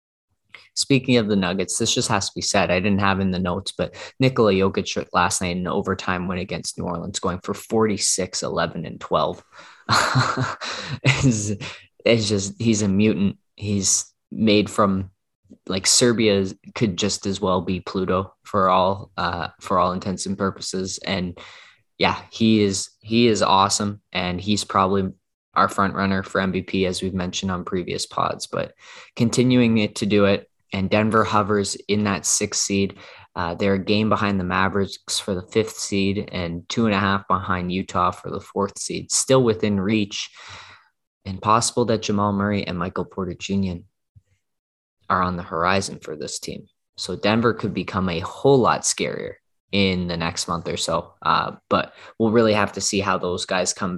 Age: 20-39